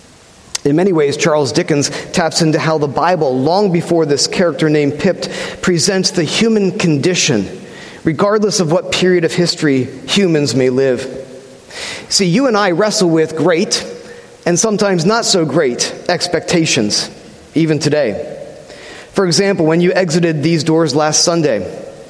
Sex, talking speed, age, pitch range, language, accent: male, 145 wpm, 40-59, 150-185 Hz, English, American